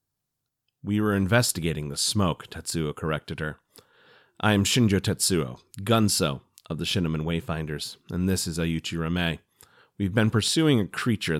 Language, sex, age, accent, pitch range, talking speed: English, male, 30-49, American, 80-110 Hz, 140 wpm